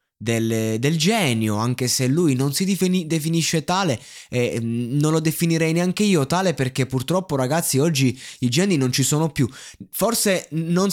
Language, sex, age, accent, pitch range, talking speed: Italian, male, 20-39, native, 130-175 Hz, 165 wpm